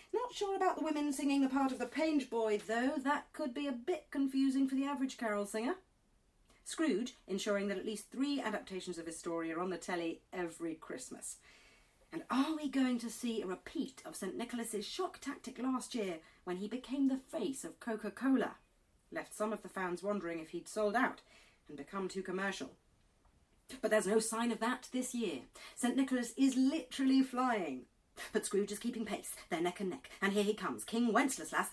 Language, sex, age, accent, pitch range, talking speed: English, female, 40-59, British, 205-280 Hz, 195 wpm